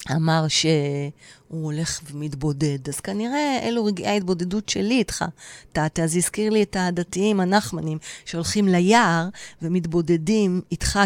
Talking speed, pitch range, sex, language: 120 wpm, 160-240 Hz, female, Hebrew